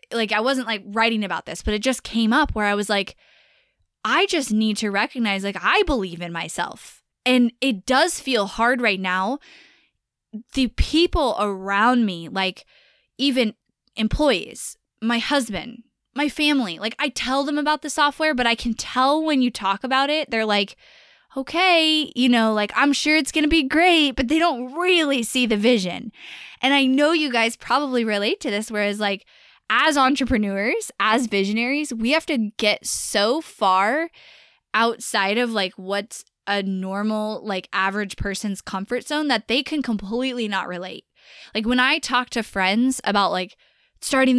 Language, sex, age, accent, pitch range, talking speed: English, female, 10-29, American, 205-275 Hz, 170 wpm